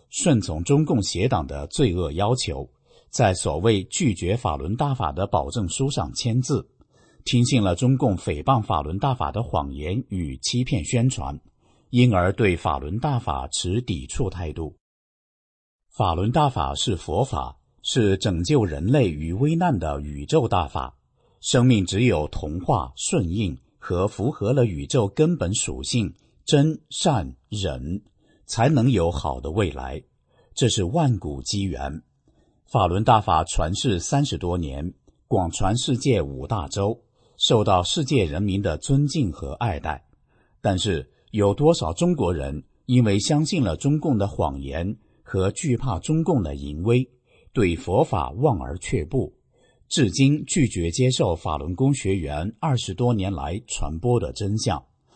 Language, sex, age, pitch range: English, male, 50-69, 85-130 Hz